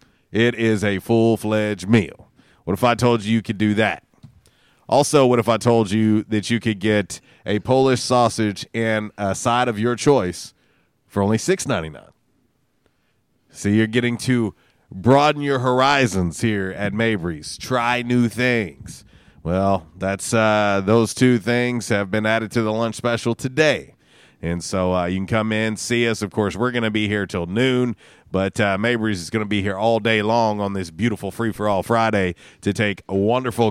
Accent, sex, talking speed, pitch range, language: American, male, 185 wpm, 100-120 Hz, English